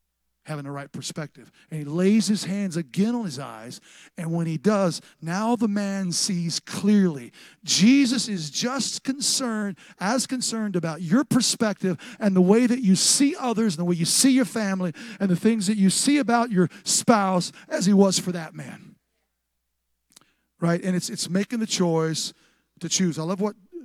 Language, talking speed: English, 180 wpm